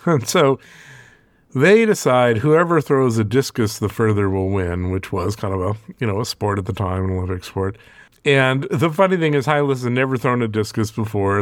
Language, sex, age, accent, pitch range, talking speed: English, male, 50-69, American, 105-135 Hz, 205 wpm